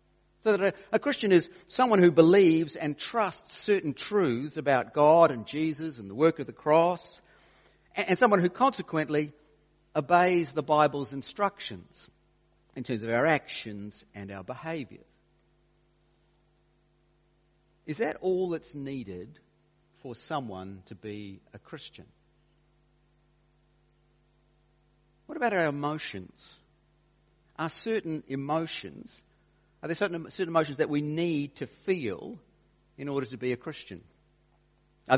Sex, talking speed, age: male, 130 wpm, 50-69